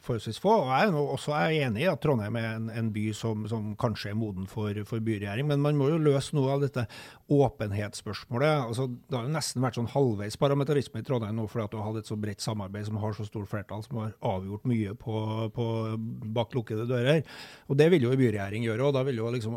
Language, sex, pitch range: English, male, 110-140 Hz